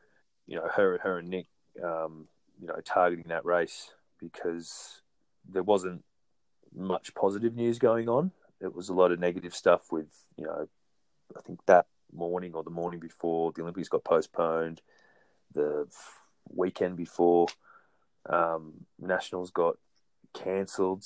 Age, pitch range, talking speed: 20-39, 80-90 Hz, 140 wpm